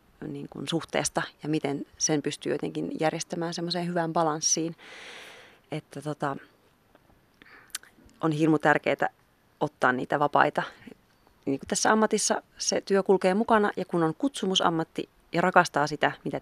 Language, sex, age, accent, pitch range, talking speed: Finnish, female, 30-49, native, 150-185 Hz, 130 wpm